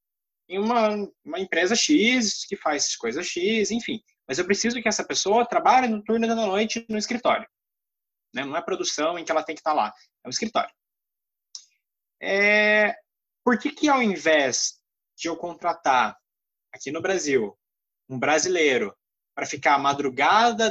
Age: 20-39